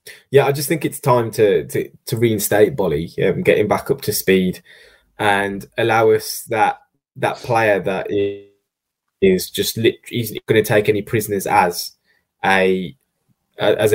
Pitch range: 100-130 Hz